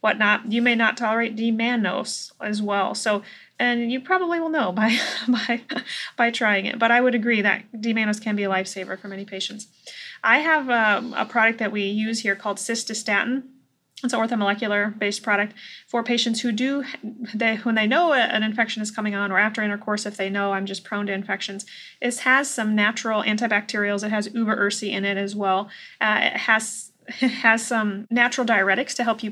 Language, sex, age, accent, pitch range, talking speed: English, female, 30-49, American, 200-230 Hz, 190 wpm